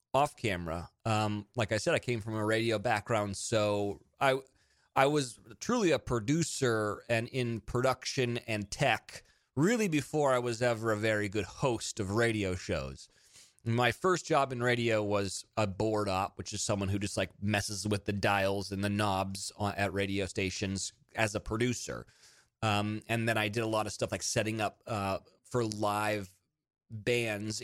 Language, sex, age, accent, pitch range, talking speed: English, male, 30-49, American, 105-130 Hz, 175 wpm